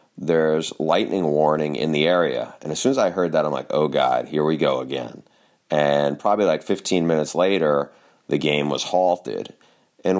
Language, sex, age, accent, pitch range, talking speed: English, male, 30-49, American, 75-85 Hz, 190 wpm